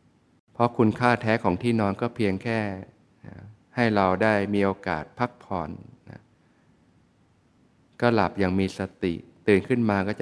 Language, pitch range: Thai, 95-110 Hz